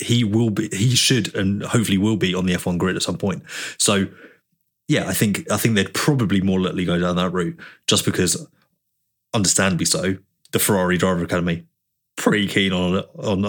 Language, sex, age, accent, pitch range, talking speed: English, male, 20-39, British, 90-110 Hz, 185 wpm